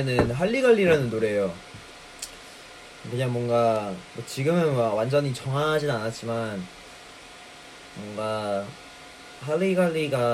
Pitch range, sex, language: 115-160 Hz, male, Korean